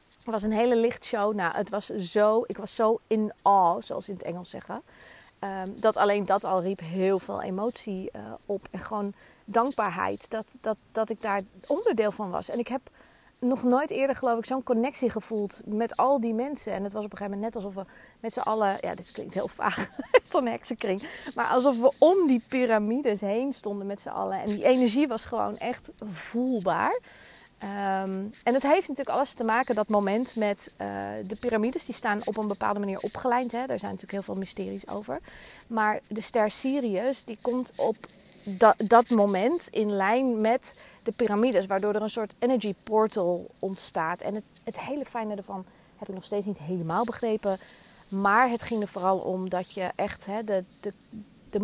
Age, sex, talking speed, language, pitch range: 30-49, female, 190 wpm, Dutch, 200-240 Hz